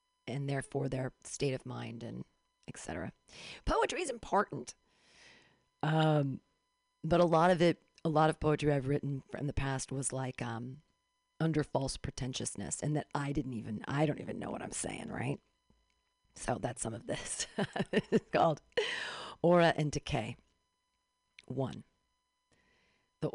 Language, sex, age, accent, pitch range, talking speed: English, female, 40-59, American, 130-180 Hz, 150 wpm